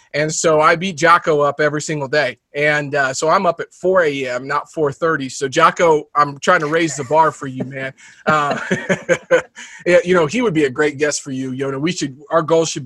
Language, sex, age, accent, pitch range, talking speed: English, male, 30-49, American, 140-165 Hz, 225 wpm